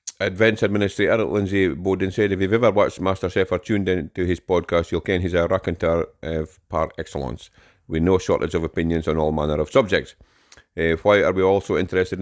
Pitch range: 85-95 Hz